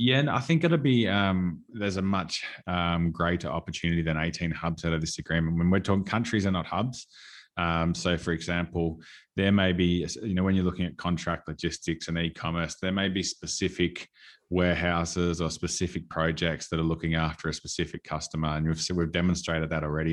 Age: 20-39